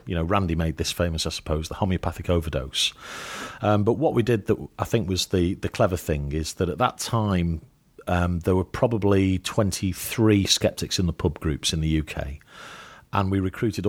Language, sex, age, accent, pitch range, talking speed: English, male, 40-59, British, 80-100 Hz, 195 wpm